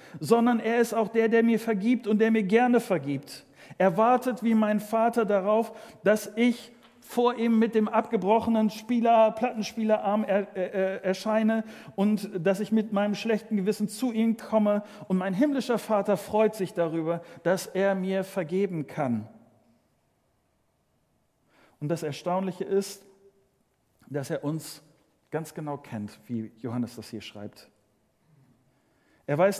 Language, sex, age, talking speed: German, male, 40-59, 145 wpm